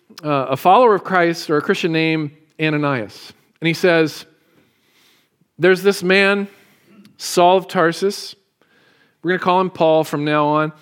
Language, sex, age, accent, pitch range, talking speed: English, male, 40-59, American, 135-165 Hz, 150 wpm